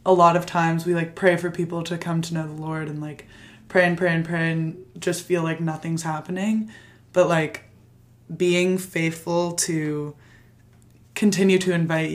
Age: 20-39